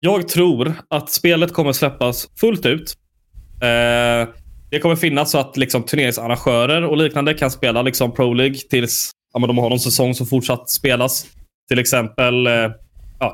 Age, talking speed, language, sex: 20-39, 165 wpm, Swedish, male